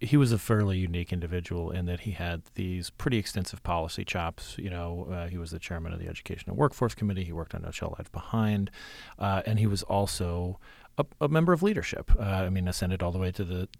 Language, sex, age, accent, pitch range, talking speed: English, male, 30-49, American, 90-105 Hz, 230 wpm